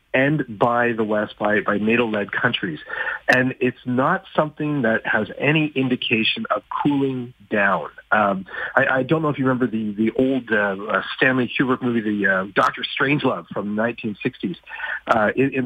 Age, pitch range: 40-59, 110-130 Hz